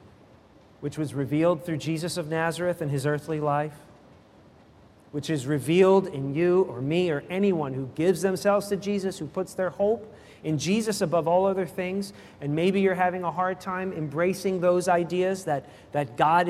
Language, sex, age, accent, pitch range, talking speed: English, male, 40-59, American, 145-185 Hz, 175 wpm